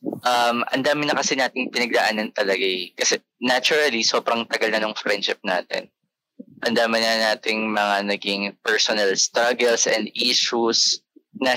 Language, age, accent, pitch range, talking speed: Filipino, 20-39, native, 110-135 Hz, 130 wpm